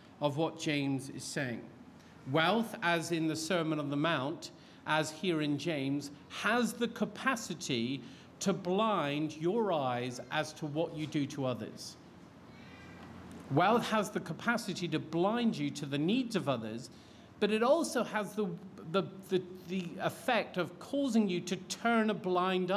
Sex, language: male, English